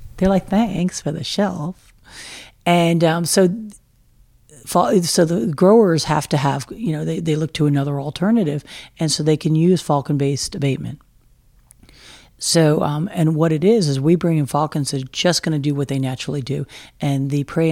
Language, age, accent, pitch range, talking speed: English, 50-69, American, 140-165 Hz, 185 wpm